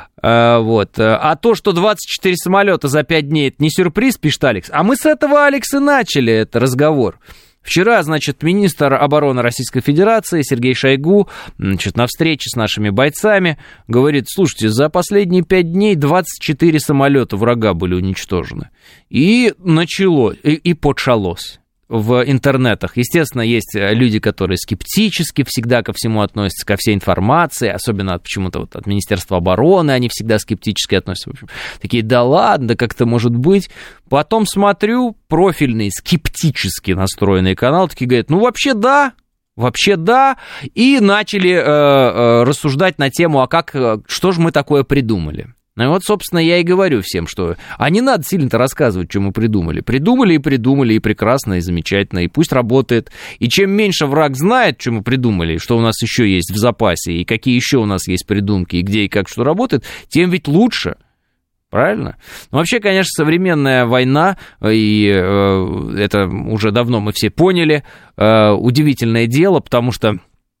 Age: 20-39